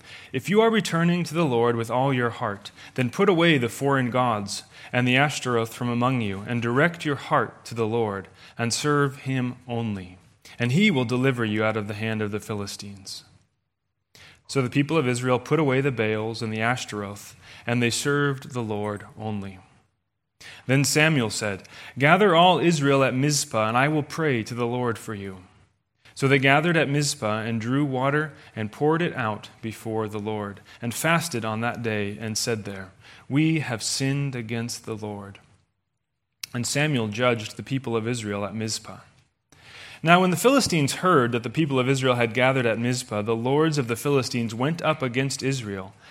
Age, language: 30-49, English